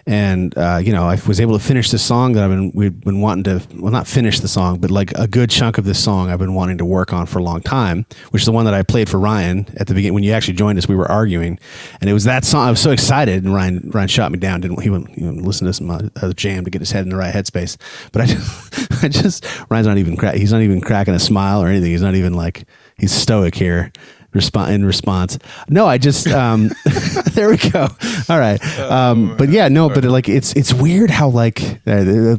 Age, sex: 30-49, male